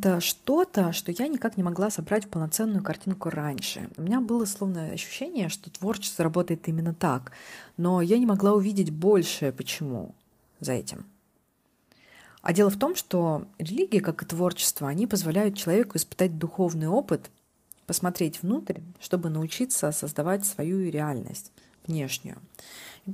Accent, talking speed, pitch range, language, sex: native, 140 wpm, 160-200 Hz, Russian, female